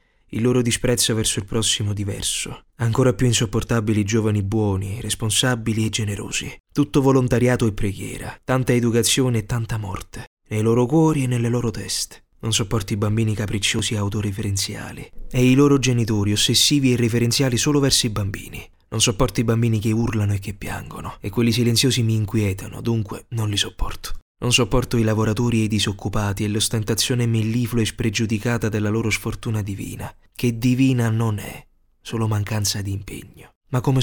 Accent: native